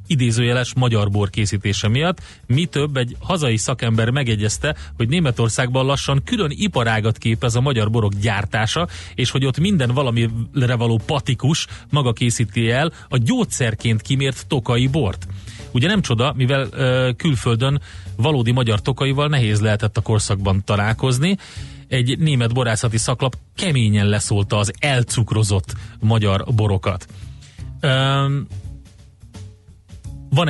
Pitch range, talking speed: 105-130 Hz, 120 wpm